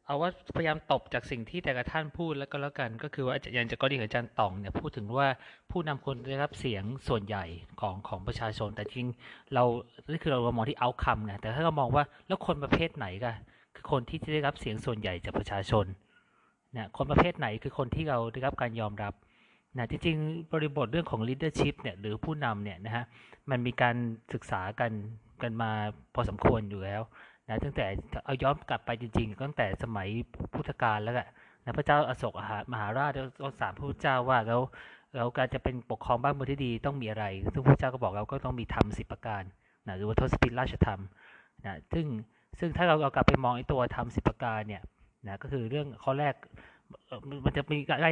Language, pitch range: Thai, 110-140 Hz